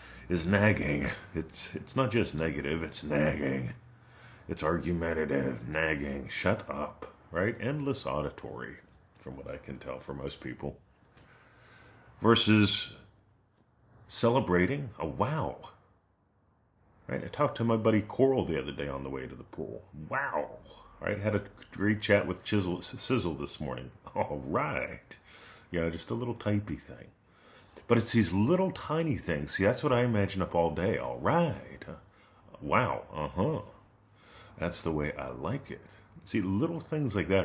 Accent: American